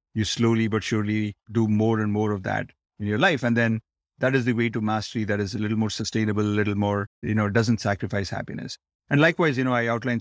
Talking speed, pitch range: 240 wpm, 105-125 Hz